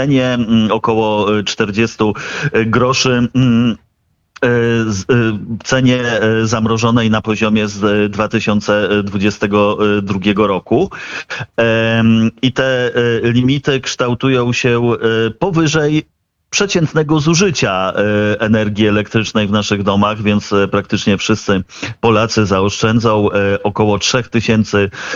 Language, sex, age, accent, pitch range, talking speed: Polish, male, 40-59, native, 105-120 Hz, 80 wpm